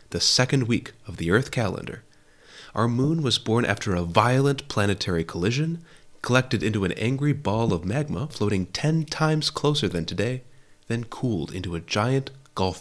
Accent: American